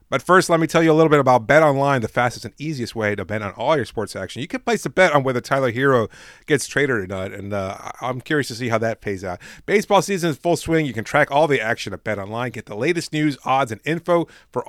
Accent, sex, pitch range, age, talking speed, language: American, male, 115-160 Hz, 30-49, 280 wpm, English